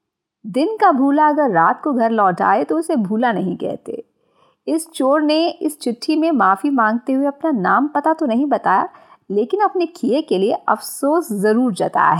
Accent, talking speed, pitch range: native, 180 wpm, 215-320 Hz